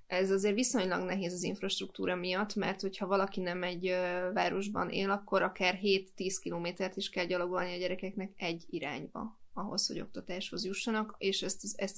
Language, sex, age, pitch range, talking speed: Hungarian, female, 20-39, 175-195 Hz, 160 wpm